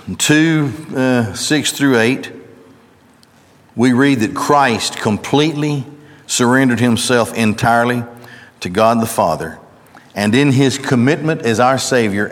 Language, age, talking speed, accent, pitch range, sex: English, 50-69, 120 wpm, American, 105-135 Hz, male